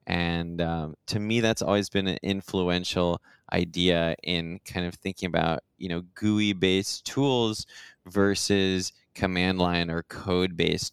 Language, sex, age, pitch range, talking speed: English, male, 20-39, 85-100 Hz, 145 wpm